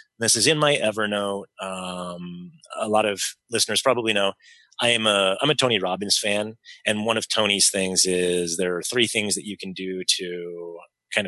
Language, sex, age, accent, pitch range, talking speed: English, male, 30-49, American, 90-105 Hz, 175 wpm